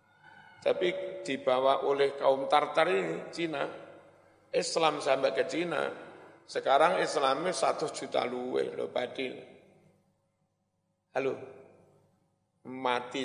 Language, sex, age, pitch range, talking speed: Indonesian, male, 50-69, 135-165 Hz, 85 wpm